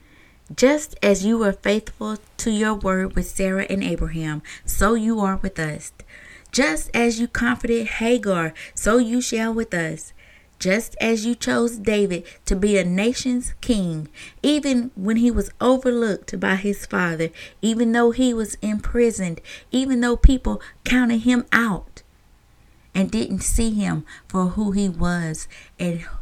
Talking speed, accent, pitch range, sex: 150 wpm, American, 175-230 Hz, female